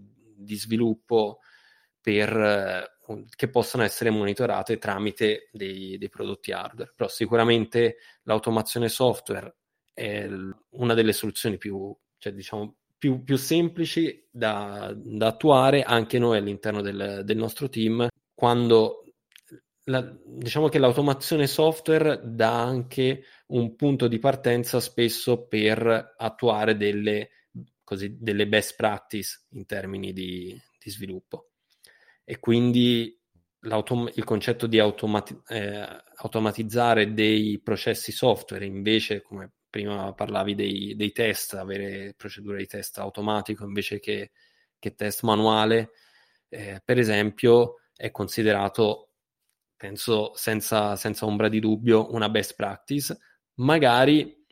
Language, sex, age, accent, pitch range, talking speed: Italian, male, 20-39, native, 105-120 Hz, 115 wpm